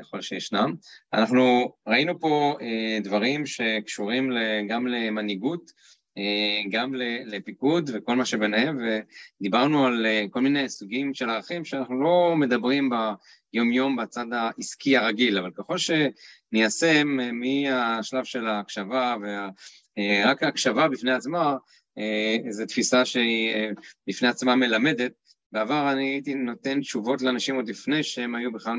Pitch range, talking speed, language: 110-140 Hz, 115 wpm, Hebrew